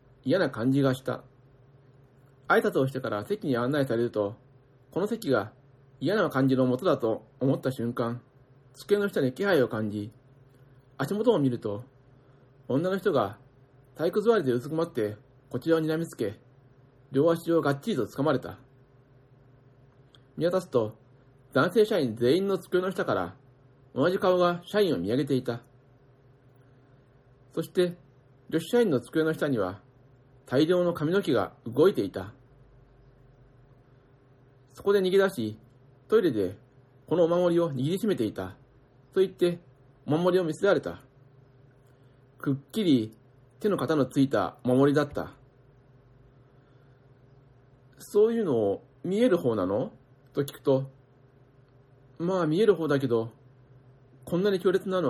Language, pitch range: Japanese, 130-145 Hz